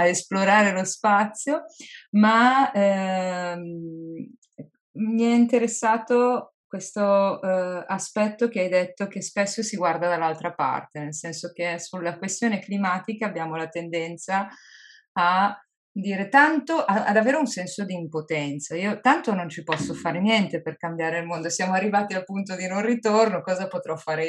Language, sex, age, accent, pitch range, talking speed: Italian, female, 20-39, native, 170-215 Hz, 150 wpm